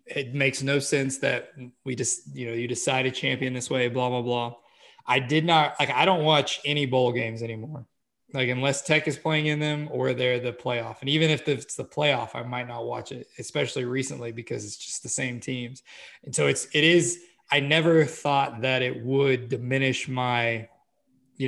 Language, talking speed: English, 205 wpm